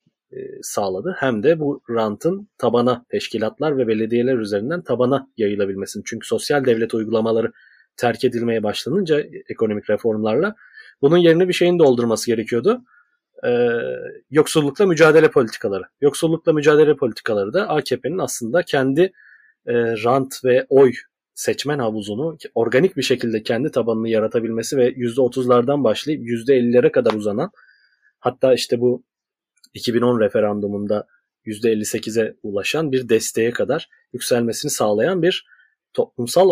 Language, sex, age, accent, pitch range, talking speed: Turkish, male, 30-49, native, 115-155 Hz, 115 wpm